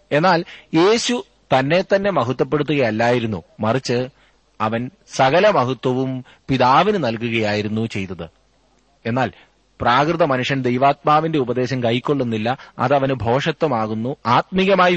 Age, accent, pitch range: 30-49, native, 115-155 Hz